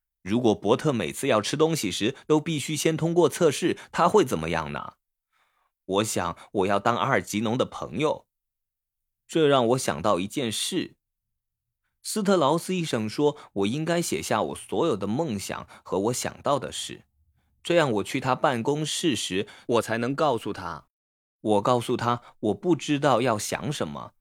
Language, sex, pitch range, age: Chinese, male, 100-155 Hz, 20-39